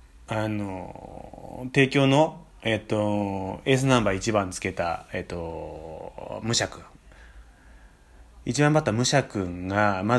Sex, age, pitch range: male, 30-49, 85-125 Hz